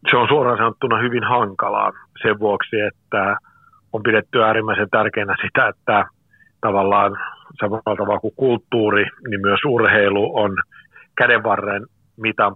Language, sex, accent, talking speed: Finnish, male, native, 125 wpm